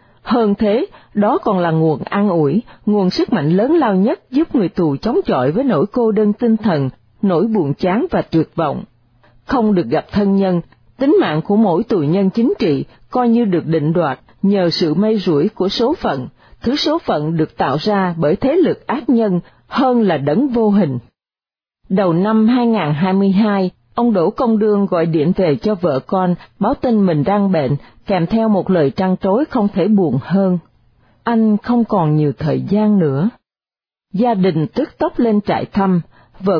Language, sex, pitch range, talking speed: Vietnamese, female, 165-220 Hz, 190 wpm